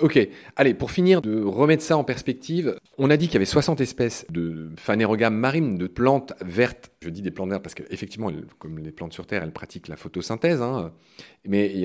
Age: 40-59